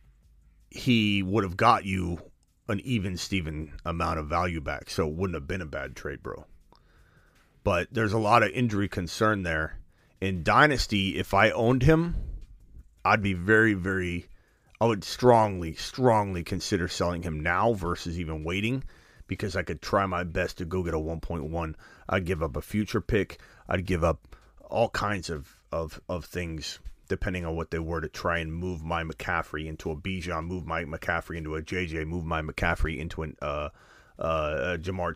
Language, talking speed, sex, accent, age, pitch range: English, 175 wpm, male, American, 30-49, 85-115 Hz